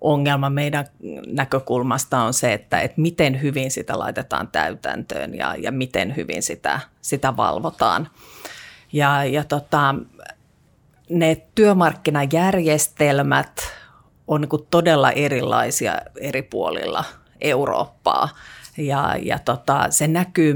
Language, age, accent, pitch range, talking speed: Finnish, 30-49, native, 135-160 Hz, 105 wpm